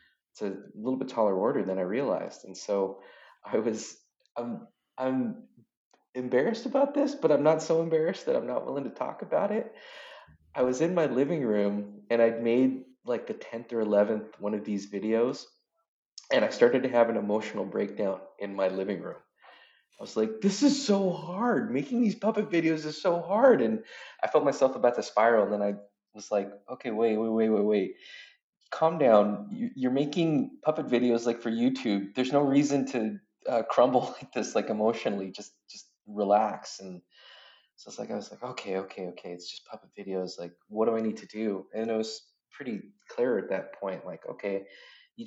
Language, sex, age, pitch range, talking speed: English, male, 20-39, 100-150 Hz, 195 wpm